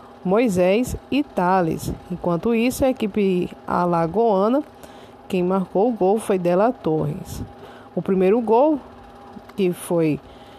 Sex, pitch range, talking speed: female, 170-215 Hz, 115 wpm